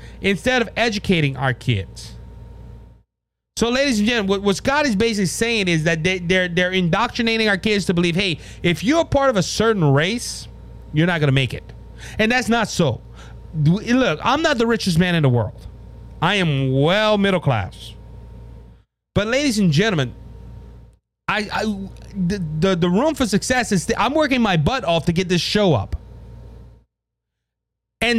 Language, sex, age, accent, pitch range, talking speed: English, male, 30-49, American, 160-230 Hz, 170 wpm